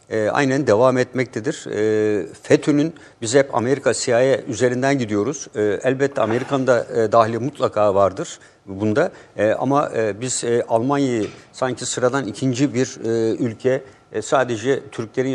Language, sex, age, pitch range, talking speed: Turkish, male, 60-79, 115-135 Hz, 135 wpm